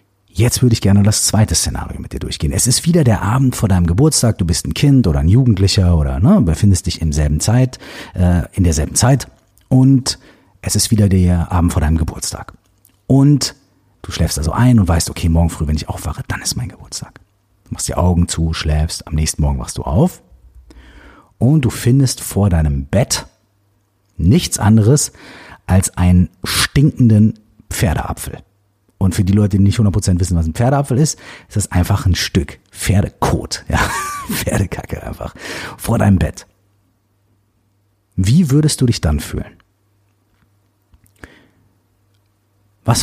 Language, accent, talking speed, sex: German, German, 160 wpm, male